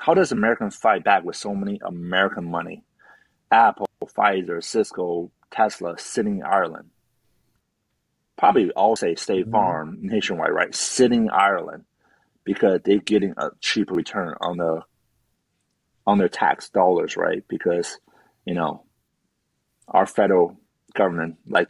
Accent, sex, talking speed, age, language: American, male, 130 wpm, 30-49, English